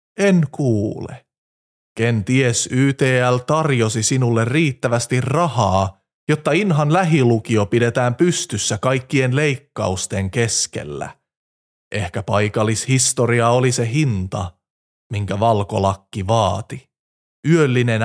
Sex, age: male, 30-49